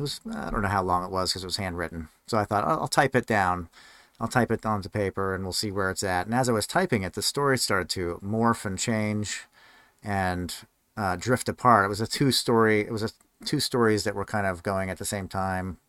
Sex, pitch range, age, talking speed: male, 90-115 Hz, 40-59, 255 wpm